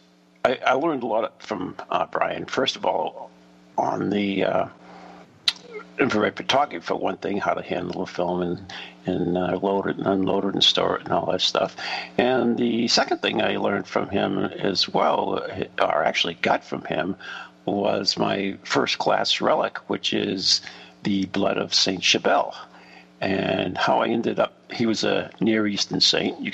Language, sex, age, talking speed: English, male, 50-69, 175 wpm